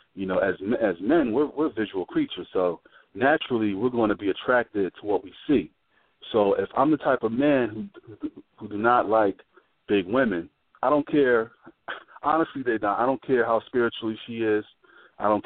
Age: 40-59